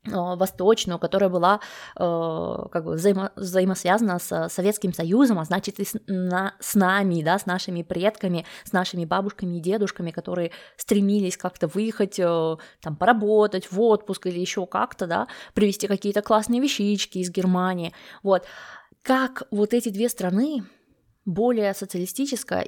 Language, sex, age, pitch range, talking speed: Russian, female, 20-39, 185-225 Hz, 130 wpm